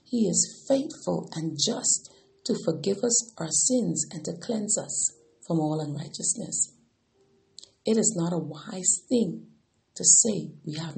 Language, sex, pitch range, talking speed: English, female, 160-225 Hz, 150 wpm